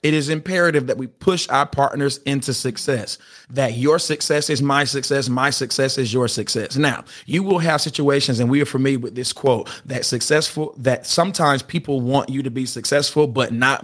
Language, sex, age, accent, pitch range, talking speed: English, male, 30-49, American, 130-155 Hz, 195 wpm